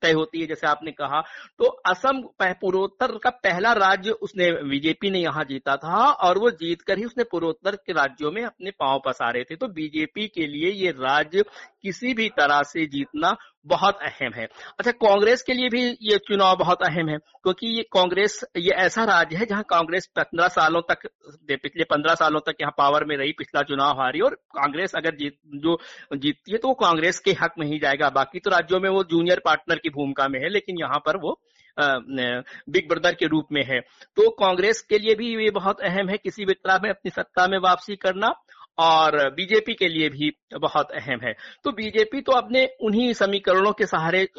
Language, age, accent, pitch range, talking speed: Hindi, 60-79, native, 150-215 Hz, 200 wpm